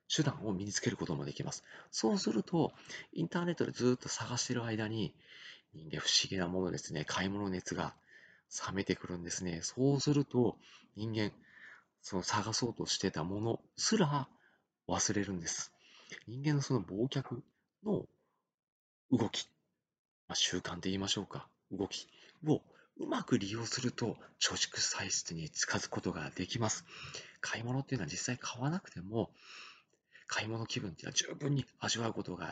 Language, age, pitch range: Japanese, 40-59, 95-130 Hz